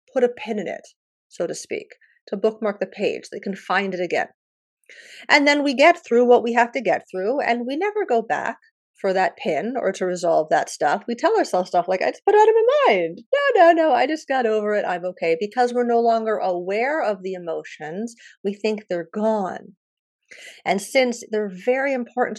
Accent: American